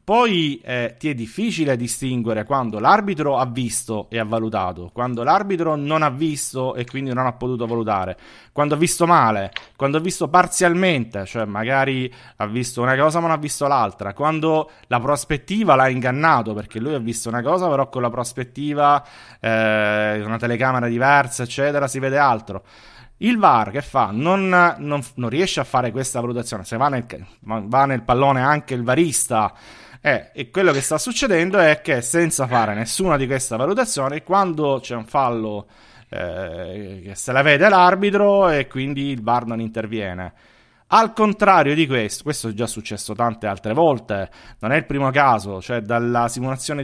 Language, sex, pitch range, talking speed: Italian, male, 115-150 Hz, 170 wpm